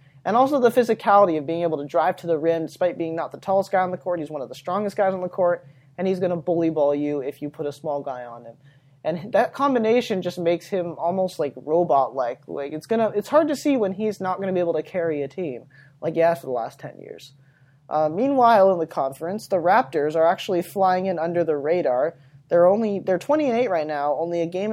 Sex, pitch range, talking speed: male, 150-190 Hz, 245 wpm